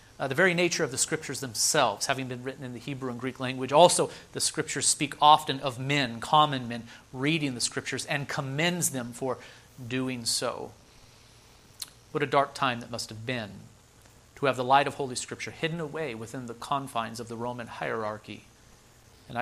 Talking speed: 185 wpm